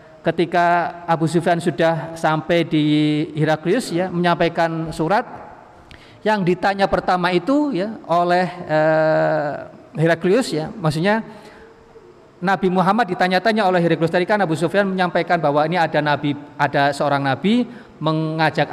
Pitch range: 155-200 Hz